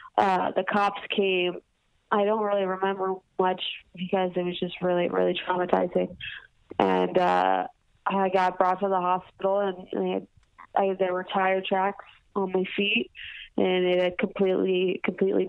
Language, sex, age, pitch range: English, female, 20-39, 185-200 Hz